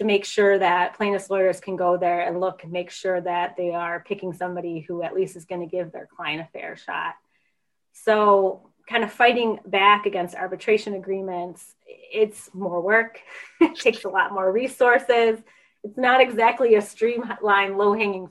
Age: 20-39